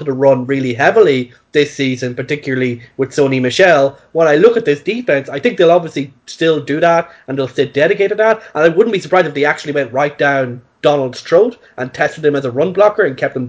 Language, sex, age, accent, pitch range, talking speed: English, male, 20-39, Irish, 130-150 Hz, 235 wpm